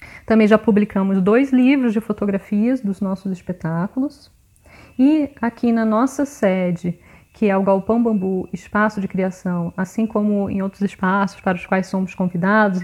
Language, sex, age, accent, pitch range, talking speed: Portuguese, female, 20-39, Brazilian, 190-235 Hz, 155 wpm